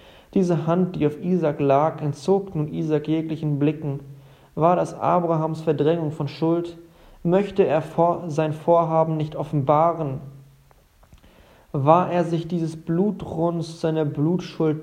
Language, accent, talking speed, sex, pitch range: German, German, 120 wpm, male, 145-170 Hz